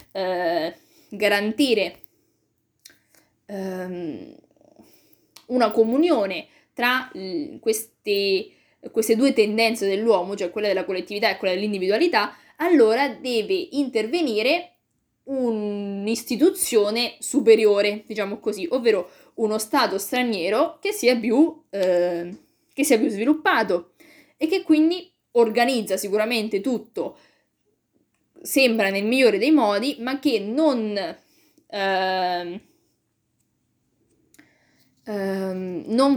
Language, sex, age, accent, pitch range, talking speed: Italian, female, 20-39, native, 205-300 Hz, 80 wpm